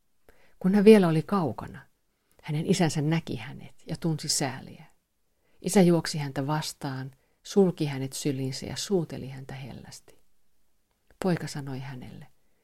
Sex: female